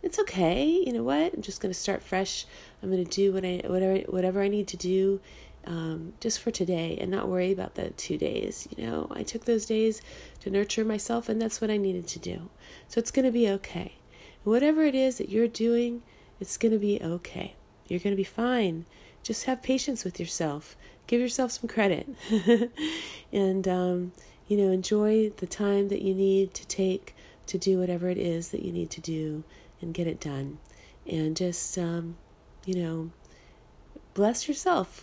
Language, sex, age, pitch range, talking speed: English, female, 40-59, 185-235 Hz, 185 wpm